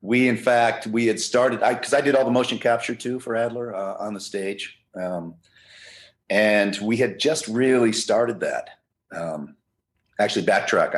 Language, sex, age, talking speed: English, male, 40-59, 175 wpm